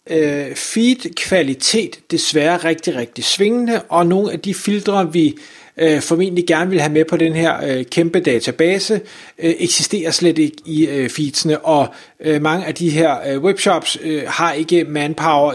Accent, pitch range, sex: native, 155-195 Hz, male